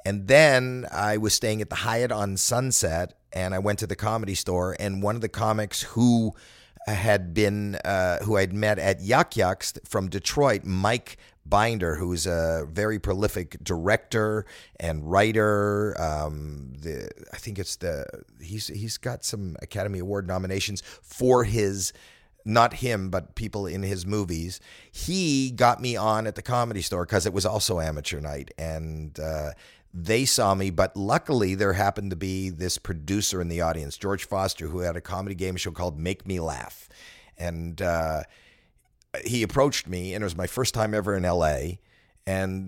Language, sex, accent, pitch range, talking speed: English, male, American, 85-105 Hz, 170 wpm